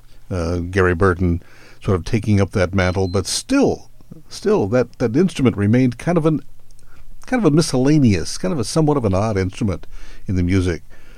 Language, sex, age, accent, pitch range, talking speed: English, male, 60-79, American, 95-125 Hz, 185 wpm